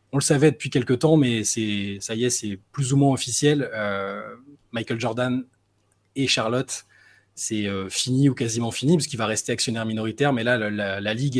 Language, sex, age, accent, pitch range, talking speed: French, male, 20-39, French, 105-130 Hz, 200 wpm